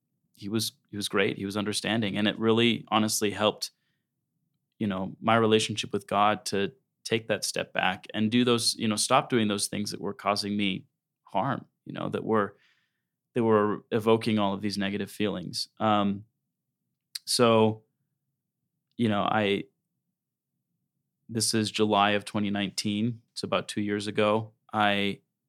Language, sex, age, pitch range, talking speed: English, male, 20-39, 100-110 Hz, 160 wpm